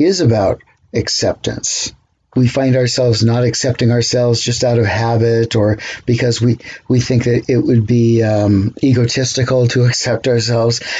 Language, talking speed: English, 145 wpm